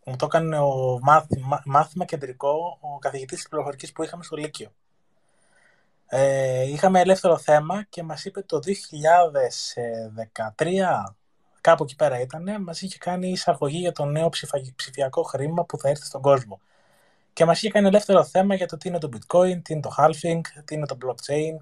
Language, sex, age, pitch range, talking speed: Greek, male, 20-39, 140-175 Hz, 170 wpm